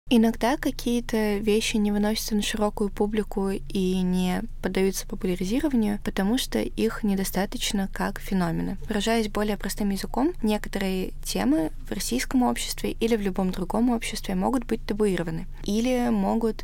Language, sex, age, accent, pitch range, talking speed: Russian, female, 20-39, native, 185-220 Hz, 135 wpm